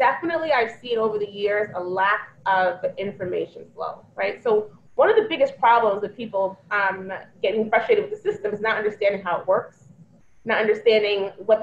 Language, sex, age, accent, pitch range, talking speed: English, female, 20-39, American, 205-290 Hz, 180 wpm